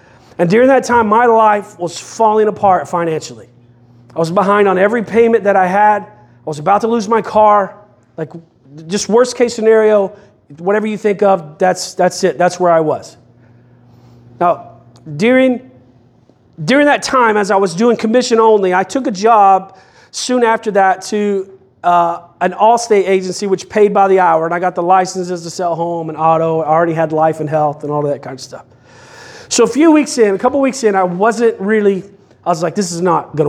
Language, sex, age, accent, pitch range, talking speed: English, male, 40-59, American, 155-210 Hz, 200 wpm